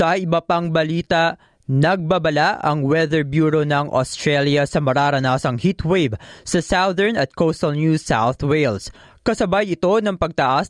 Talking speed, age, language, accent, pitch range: 135 wpm, 20-39, Filipino, native, 140-175 Hz